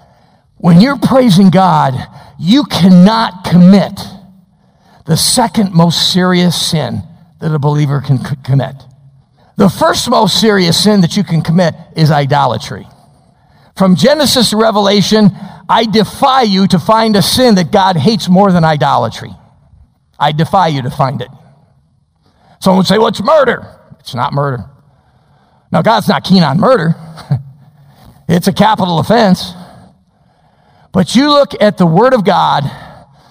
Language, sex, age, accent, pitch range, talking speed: English, male, 50-69, American, 145-190 Hz, 140 wpm